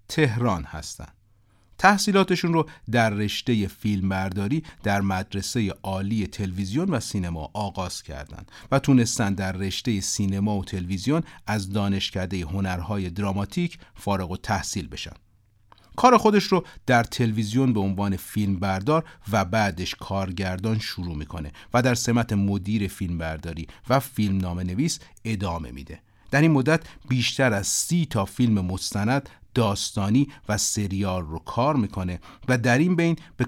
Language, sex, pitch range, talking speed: Persian, male, 95-125 Hz, 135 wpm